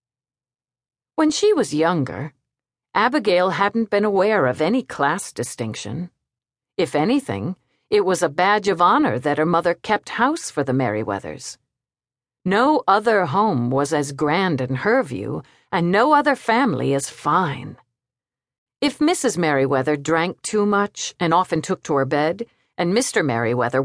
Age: 50-69